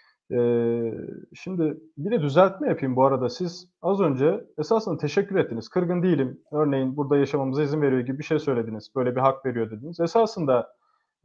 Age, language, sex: 30-49, Turkish, male